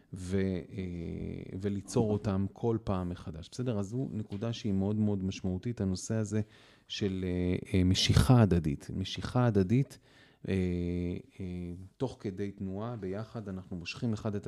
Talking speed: 120 wpm